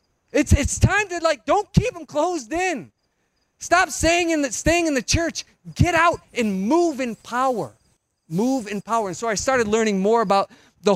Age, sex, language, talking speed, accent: 30-49, male, English, 180 wpm, American